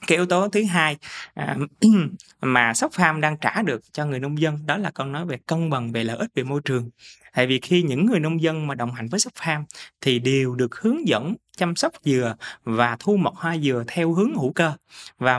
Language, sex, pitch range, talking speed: Vietnamese, male, 130-180 Hz, 235 wpm